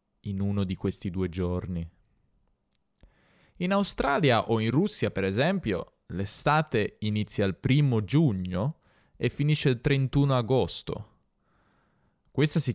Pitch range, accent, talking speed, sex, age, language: 100-150 Hz, native, 120 wpm, male, 20-39, Italian